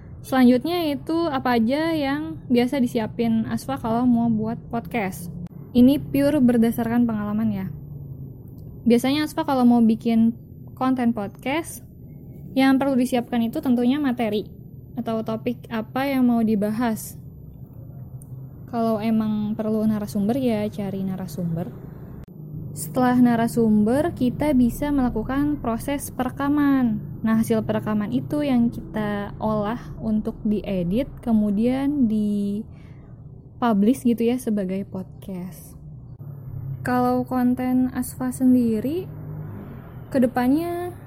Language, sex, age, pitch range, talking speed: Indonesian, female, 10-29, 200-255 Hz, 100 wpm